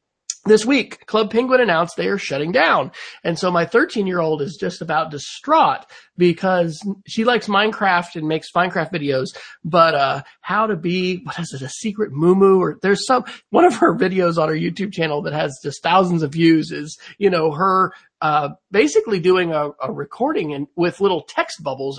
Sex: male